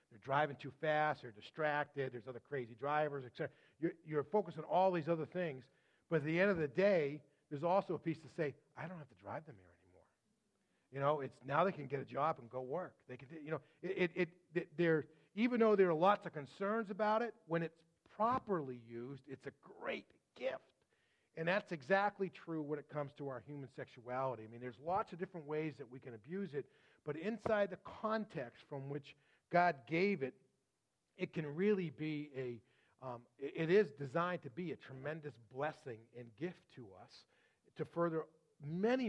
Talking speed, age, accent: 200 wpm, 40-59, American